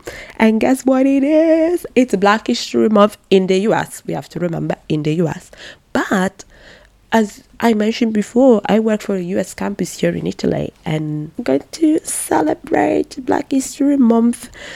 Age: 20-39